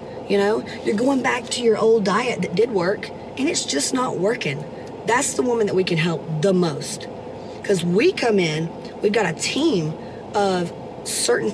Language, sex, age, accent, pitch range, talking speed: English, female, 40-59, American, 170-220 Hz, 185 wpm